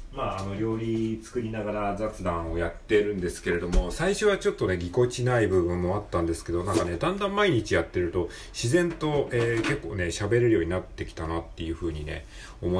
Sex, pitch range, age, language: male, 85-110 Hz, 40-59, Japanese